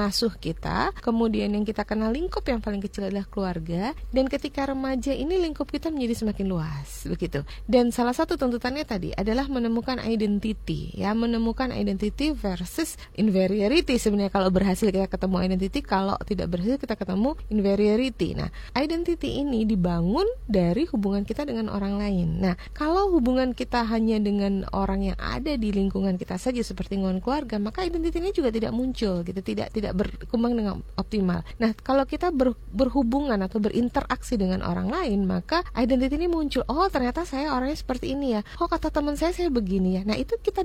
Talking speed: 170 wpm